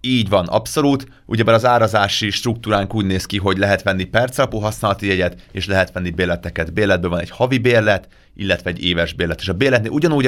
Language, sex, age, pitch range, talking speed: Hungarian, male, 30-49, 90-115 Hz, 195 wpm